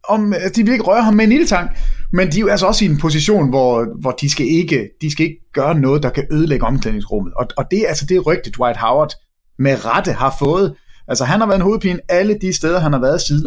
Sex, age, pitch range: male, 30-49, 125-185 Hz